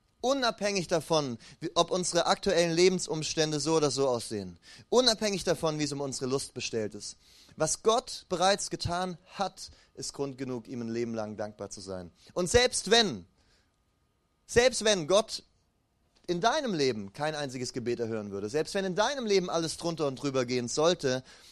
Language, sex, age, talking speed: German, male, 30-49, 165 wpm